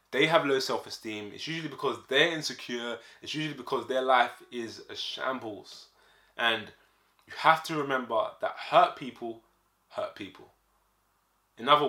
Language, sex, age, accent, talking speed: English, male, 20-39, British, 145 wpm